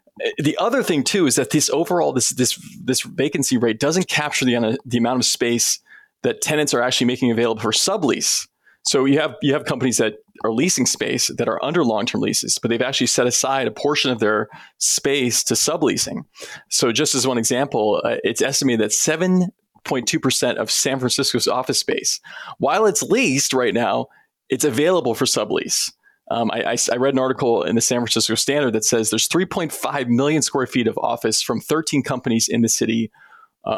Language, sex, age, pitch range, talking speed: English, male, 20-39, 115-150 Hz, 190 wpm